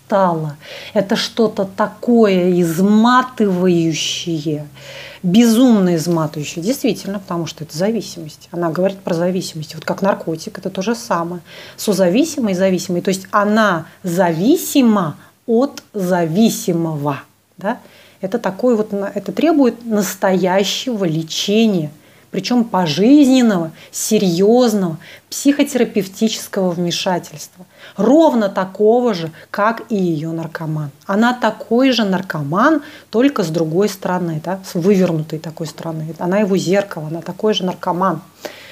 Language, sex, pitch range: Russian, female, 170-215 Hz